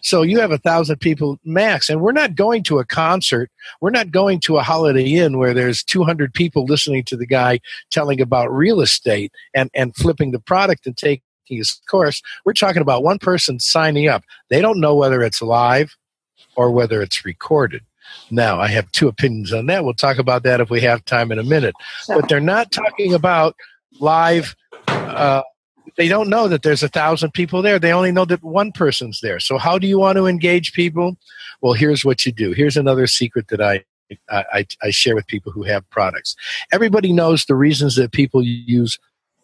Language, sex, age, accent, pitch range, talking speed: English, male, 50-69, American, 125-170 Hz, 200 wpm